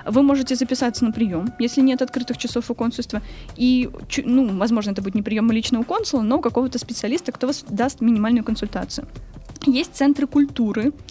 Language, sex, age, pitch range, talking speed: Russian, female, 20-39, 220-265 Hz, 180 wpm